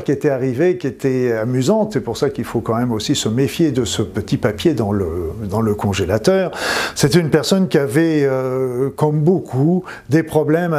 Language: French